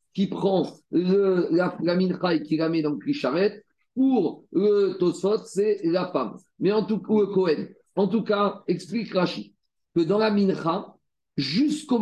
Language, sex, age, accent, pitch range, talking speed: French, male, 50-69, French, 170-205 Hz, 170 wpm